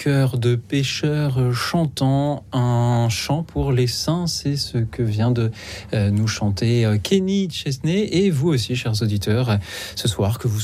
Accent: French